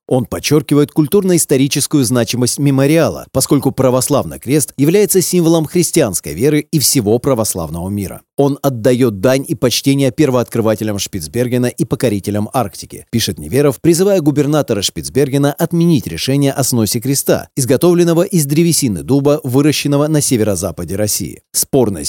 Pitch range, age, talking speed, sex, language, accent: 115-150 Hz, 30-49, 120 wpm, male, Russian, native